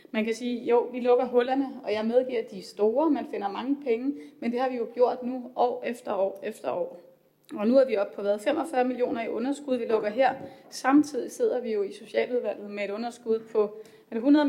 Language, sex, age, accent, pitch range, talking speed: Danish, female, 30-49, native, 225-270 Hz, 230 wpm